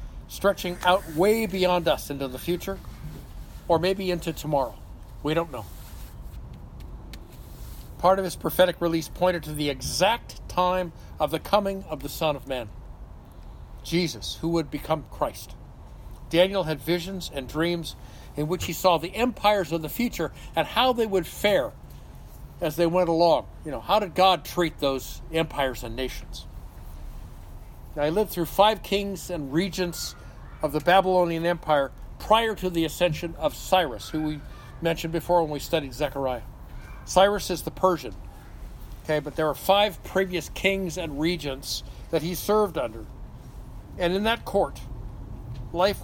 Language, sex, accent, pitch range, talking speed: English, male, American, 130-180 Hz, 155 wpm